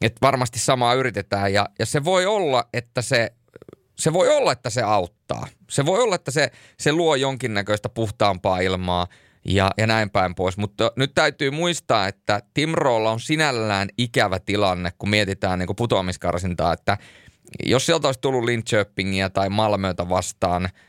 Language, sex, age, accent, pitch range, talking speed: Finnish, male, 30-49, native, 95-120 Hz, 165 wpm